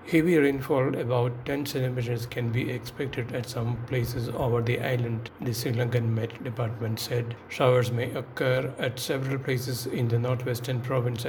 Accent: Indian